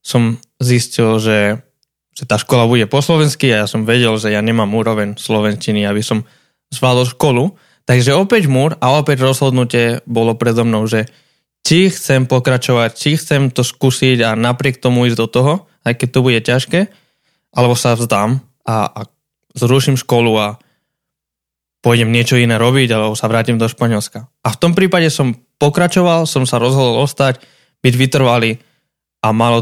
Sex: male